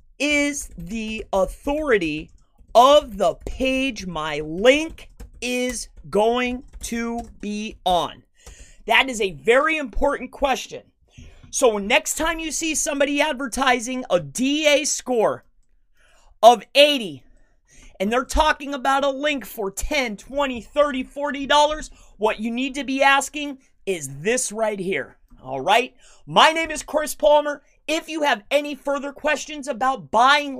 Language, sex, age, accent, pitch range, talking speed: English, male, 30-49, American, 210-295 Hz, 135 wpm